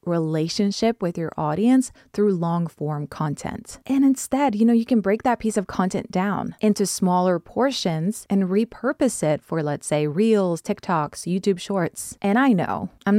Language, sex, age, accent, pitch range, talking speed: English, female, 20-39, American, 165-220 Hz, 170 wpm